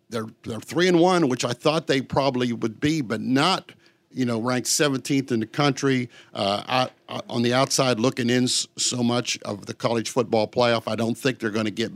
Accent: American